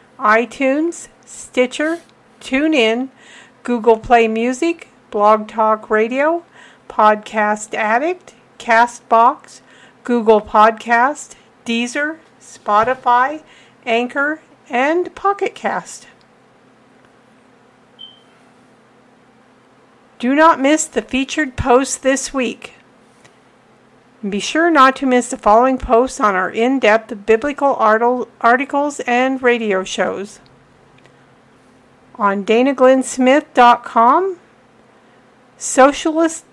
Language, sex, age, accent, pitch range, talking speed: English, female, 50-69, American, 230-265 Hz, 80 wpm